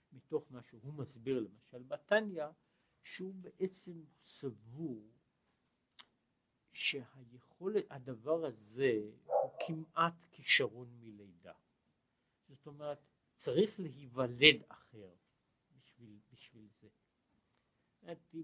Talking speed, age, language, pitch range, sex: 80 wpm, 60-79, Hebrew, 120-170 Hz, male